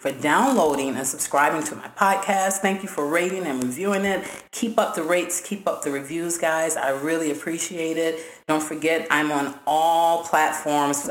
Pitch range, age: 140-195 Hz, 40-59